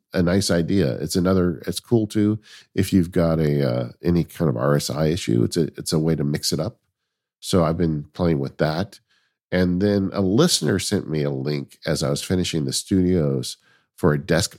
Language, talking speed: English, 205 wpm